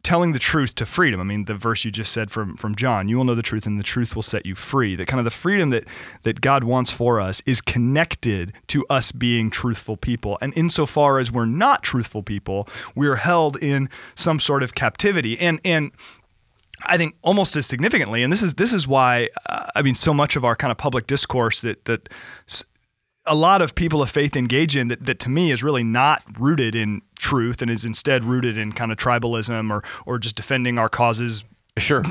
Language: English